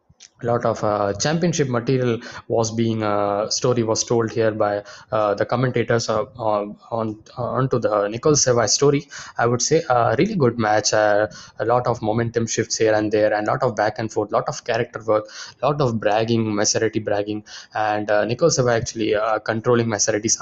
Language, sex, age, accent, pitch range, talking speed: English, male, 20-39, Indian, 110-130 Hz, 205 wpm